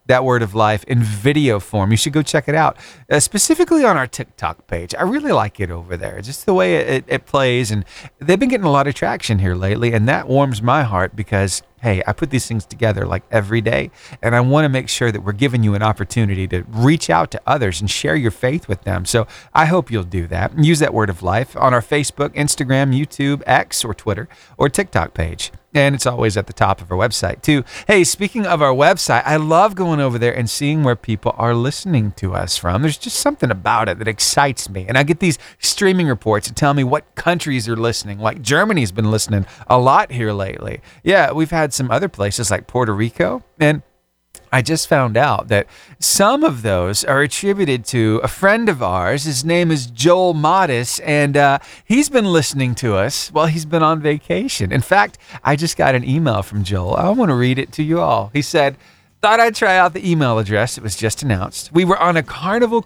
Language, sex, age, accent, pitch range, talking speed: English, male, 40-59, American, 110-155 Hz, 225 wpm